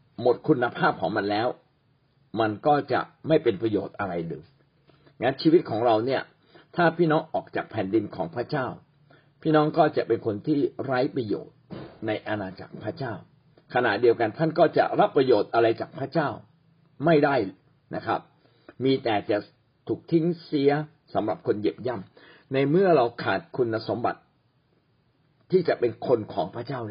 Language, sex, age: Thai, male, 60-79